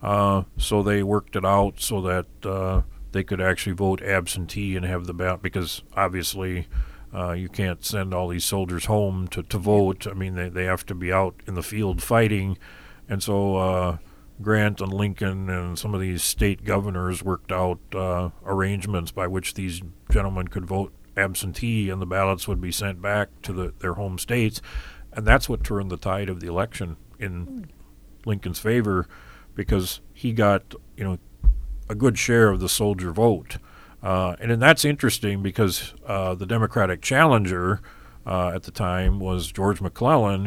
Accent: American